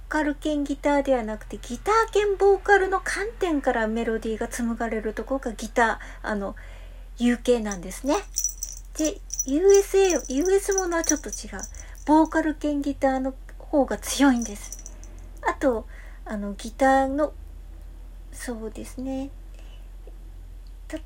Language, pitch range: Japanese, 215-295 Hz